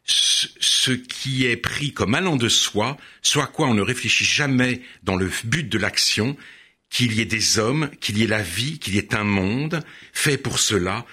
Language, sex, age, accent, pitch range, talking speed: French, male, 60-79, French, 100-130 Hz, 200 wpm